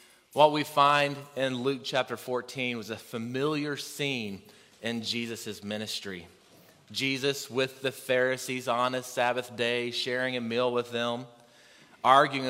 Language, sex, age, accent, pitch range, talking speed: English, male, 30-49, American, 120-150 Hz, 135 wpm